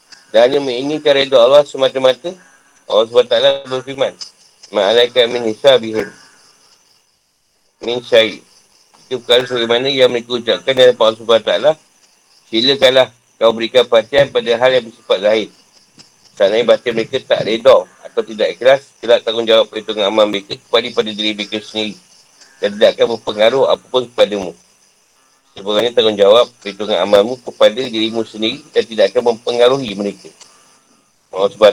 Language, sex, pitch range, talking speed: Malay, male, 115-150 Hz, 135 wpm